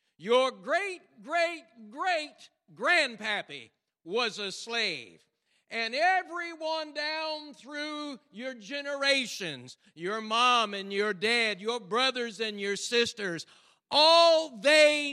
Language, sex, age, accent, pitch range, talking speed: English, male, 60-79, American, 200-270 Hz, 105 wpm